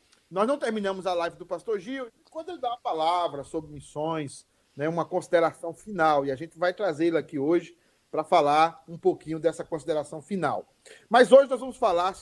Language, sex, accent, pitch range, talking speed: Portuguese, male, Brazilian, 170-215 Hz, 185 wpm